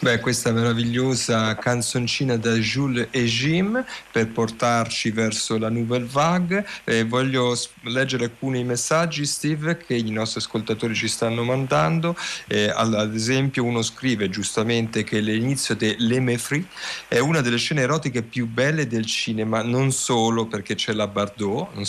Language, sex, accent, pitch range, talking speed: Italian, male, native, 115-155 Hz, 145 wpm